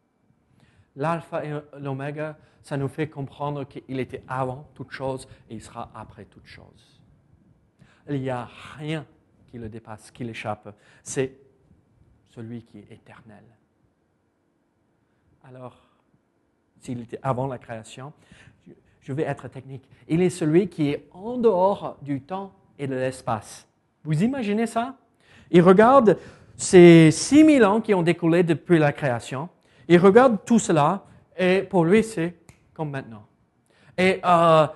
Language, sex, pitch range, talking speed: French, male, 135-195 Hz, 140 wpm